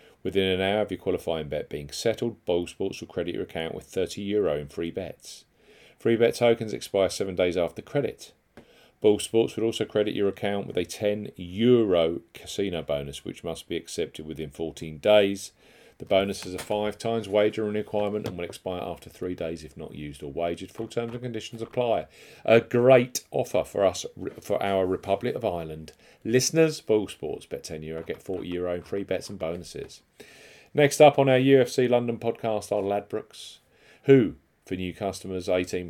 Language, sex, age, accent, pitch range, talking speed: English, male, 40-59, British, 95-120 Hz, 185 wpm